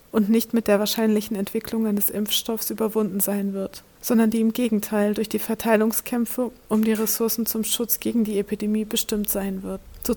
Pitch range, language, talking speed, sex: 210-230 Hz, German, 175 wpm, female